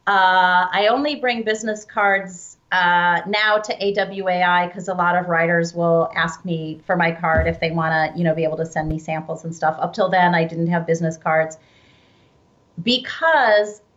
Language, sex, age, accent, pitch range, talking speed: English, female, 30-49, American, 170-205 Hz, 190 wpm